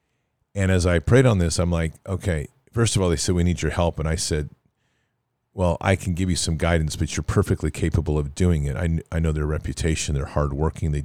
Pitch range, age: 80-100 Hz, 40-59